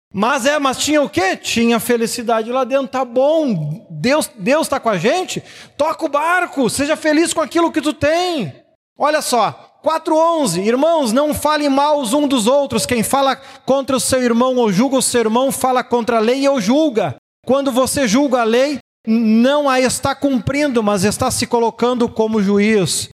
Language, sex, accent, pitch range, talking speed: Portuguese, male, Brazilian, 195-260 Hz, 185 wpm